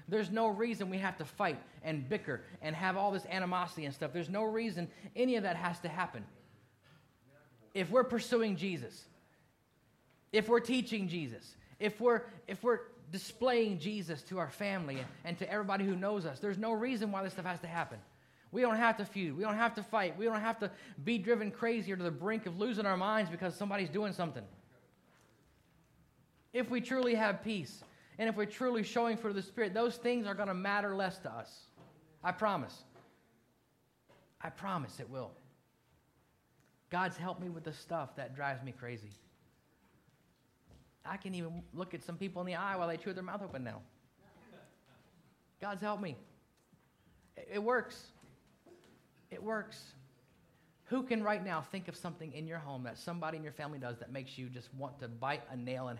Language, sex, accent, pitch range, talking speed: English, male, American, 150-215 Hz, 190 wpm